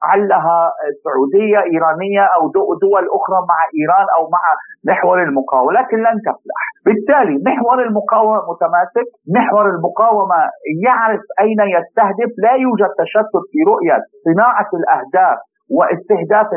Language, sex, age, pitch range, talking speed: Arabic, male, 50-69, 190-265 Hz, 115 wpm